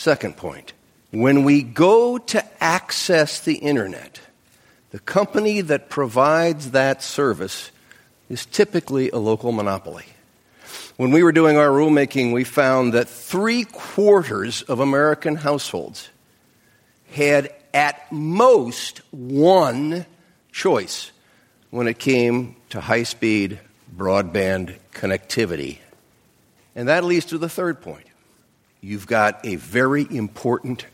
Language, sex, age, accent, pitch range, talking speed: English, male, 50-69, American, 110-155 Hz, 110 wpm